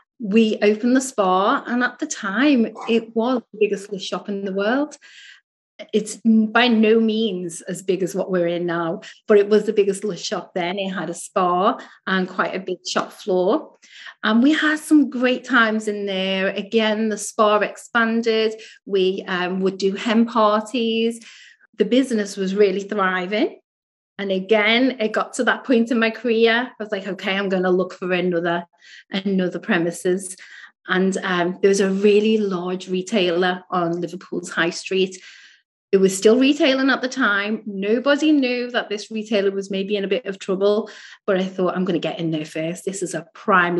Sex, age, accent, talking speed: female, 30-49, British, 185 wpm